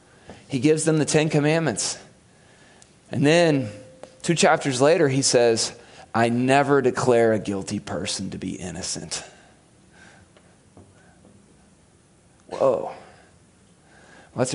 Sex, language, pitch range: male, English, 130-165 Hz